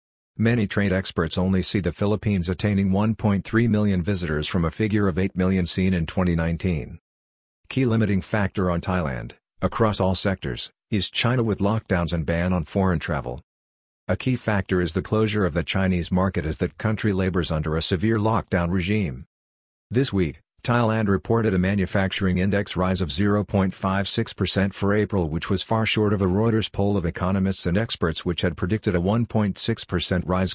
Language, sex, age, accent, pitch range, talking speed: English, male, 50-69, American, 85-105 Hz, 170 wpm